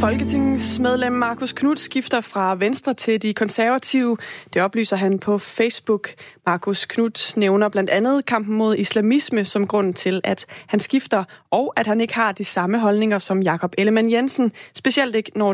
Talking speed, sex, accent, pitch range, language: 170 wpm, female, native, 195-235 Hz, Danish